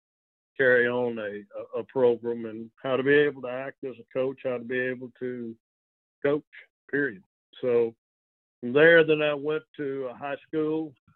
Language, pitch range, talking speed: English, 115-130 Hz, 170 wpm